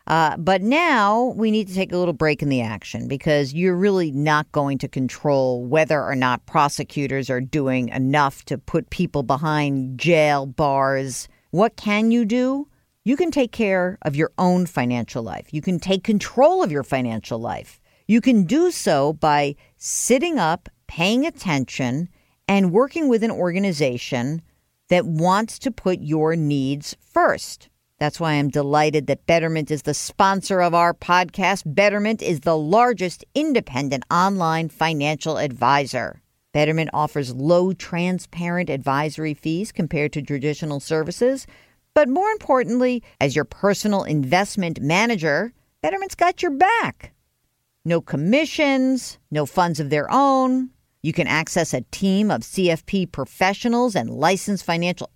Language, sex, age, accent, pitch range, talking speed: English, female, 50-69, American, 145-210 Hz, 145 wpm